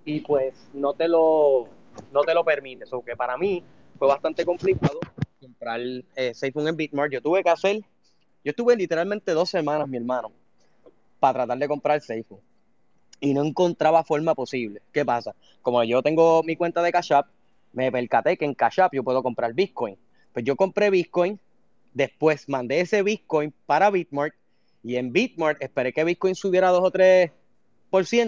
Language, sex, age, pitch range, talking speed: Spanish, male, 20-39, 135-175 Hz, 170 wpm